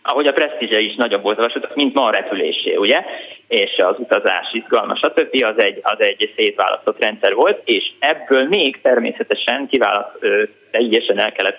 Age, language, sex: 20-39, Hungarian, male